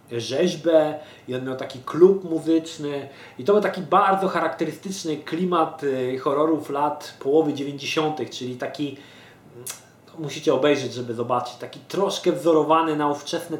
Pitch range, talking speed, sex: 130-160 Hz, 130 wpm, male